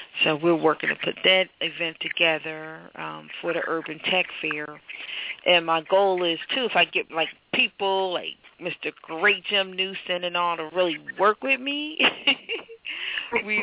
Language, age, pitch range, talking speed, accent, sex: English, 40-59, 160-180 Hz, 165 wpm, American, female